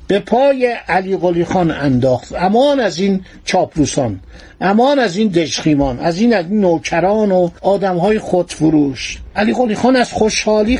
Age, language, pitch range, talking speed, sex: 50-69, Persian, 175-230 Hz, 150 wpm, male